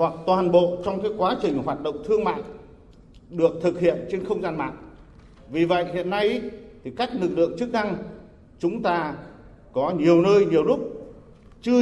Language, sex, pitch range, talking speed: Vietnamese, male, 155-210 Hz, 180 wpm